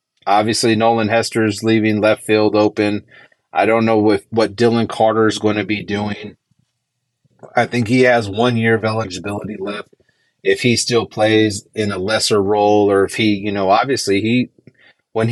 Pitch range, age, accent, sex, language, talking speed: 100-115 Hz, 30-49, American, male, English, 175 wpm